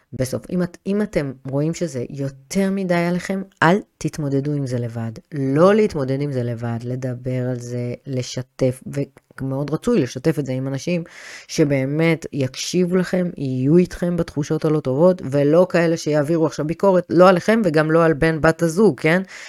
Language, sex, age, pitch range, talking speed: Hebrew, female, 30-49, 130-170 Hz, 165 wpm